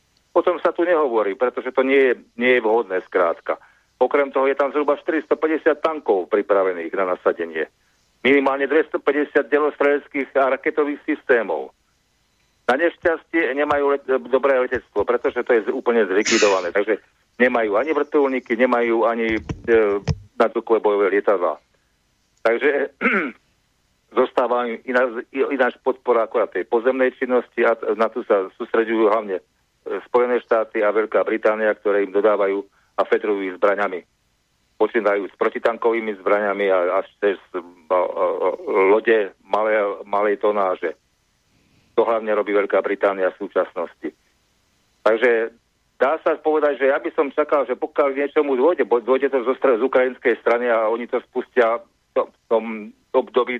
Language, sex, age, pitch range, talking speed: English, male, 50-69, 110-150 Hz, 135 wpm